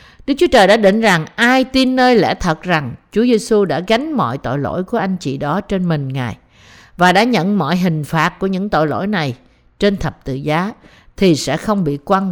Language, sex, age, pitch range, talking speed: Vietnamese, female, 50-69, 155-220 Hz, 225 wpm